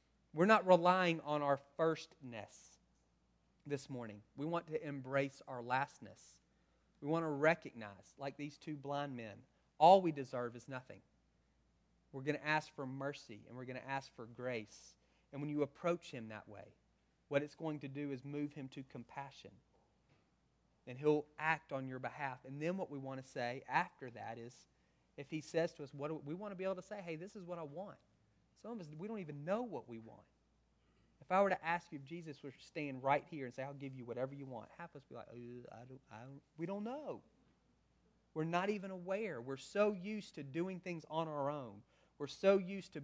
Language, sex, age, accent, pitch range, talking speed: English, male, 30-49, American, 130-170 Hz, 215 wpm